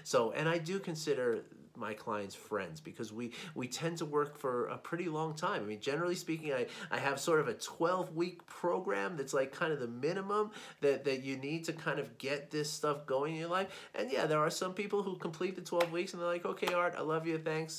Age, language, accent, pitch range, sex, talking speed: 30-49, English, American, 115-165 Hz, male, 240 wpm